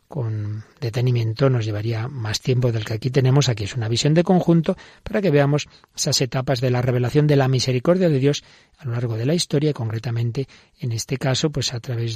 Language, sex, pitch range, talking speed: Spanish, male, 125-160 Hz, 210 wpm